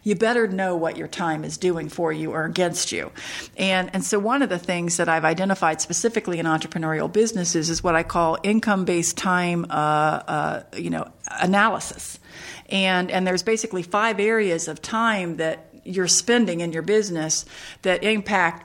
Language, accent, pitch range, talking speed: English, American, 170-210 Hz, 175 wpm